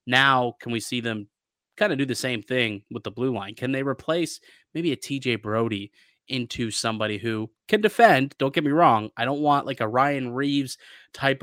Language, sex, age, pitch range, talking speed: English, male, 20-39, 110-125 Hz, 205 wpm